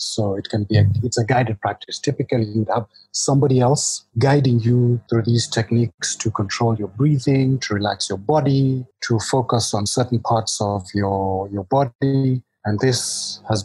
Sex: male